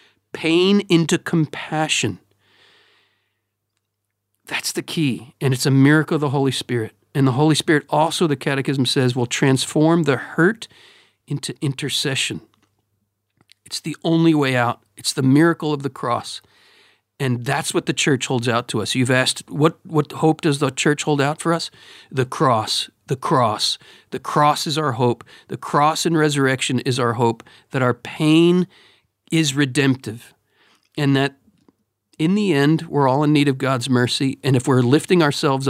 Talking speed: 165 wpm